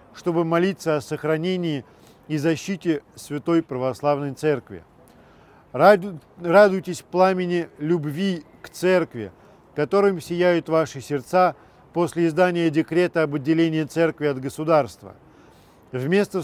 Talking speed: 100 wpm